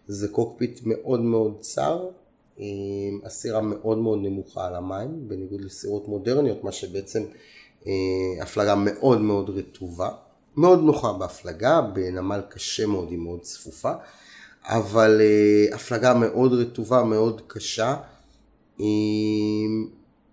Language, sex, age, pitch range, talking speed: Hebrew, male, 30-49, 100-115 Hz, 105 wpm